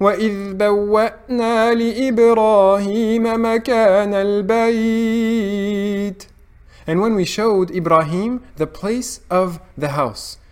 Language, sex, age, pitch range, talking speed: English, male, 20-39, 150-230 Hz, 85 wpm